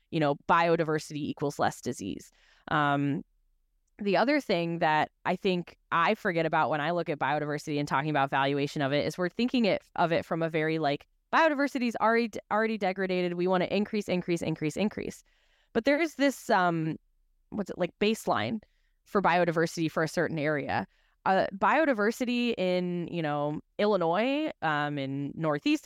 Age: 10-29